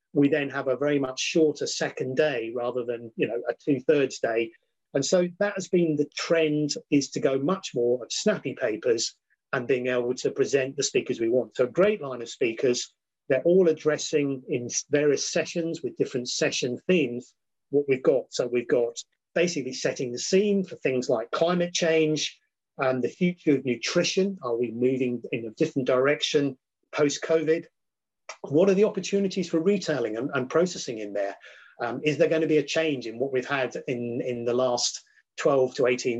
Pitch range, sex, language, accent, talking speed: 130-175 Hz, male, English, British, 190 wpm